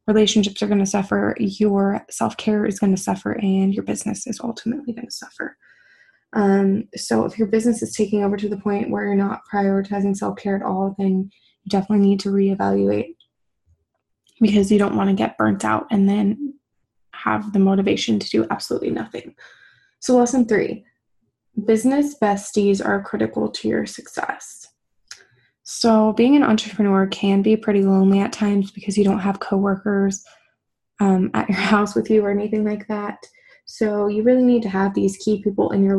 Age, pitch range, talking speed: 20-39, 195-215 Hz, 175 wpm